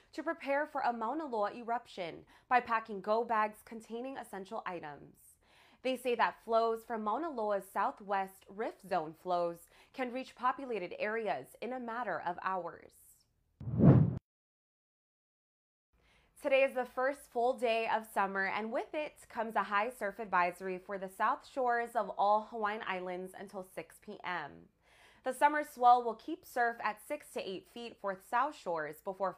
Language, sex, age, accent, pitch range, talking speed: English, female, 20-39, American, 190-240 Hz, 155 wpm